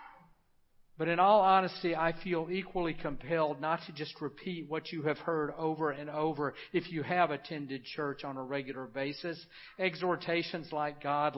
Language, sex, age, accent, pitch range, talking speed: English, male, 50-69, American, 130-155 Hz, 165 wpm